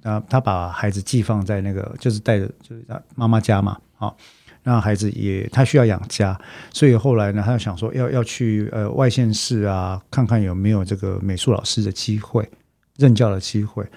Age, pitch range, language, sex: 50-69, 100-130 Hz, Chinese, male